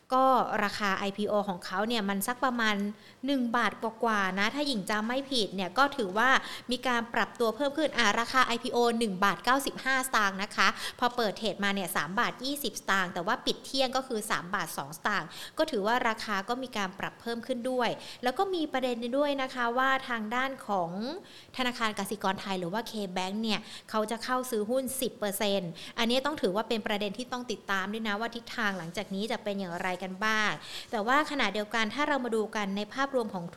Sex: female